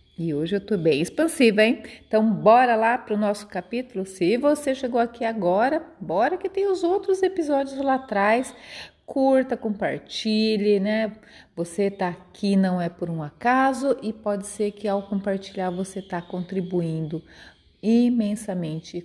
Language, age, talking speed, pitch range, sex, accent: Portuguese, 30-49, 150 wpm, 185-245 Hz, female, Brazilian